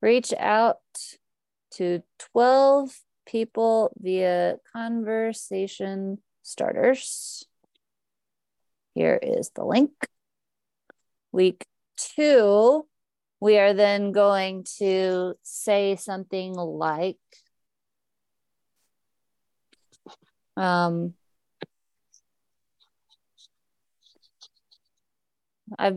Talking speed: 55 wpm